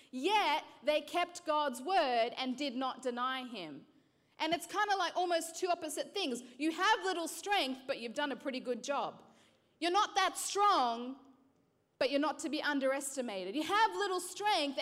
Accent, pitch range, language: Australian, 265-345 Hz, English